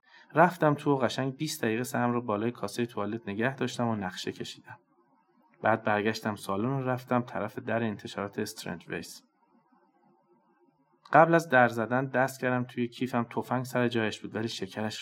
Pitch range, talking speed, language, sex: 105-130 Hz, 160 wpm, Persian, male